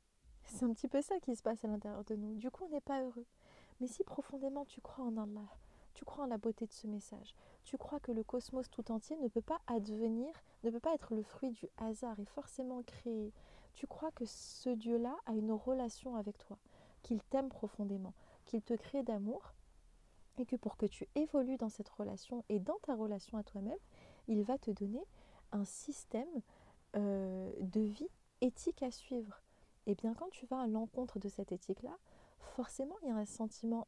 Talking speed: 205 wpm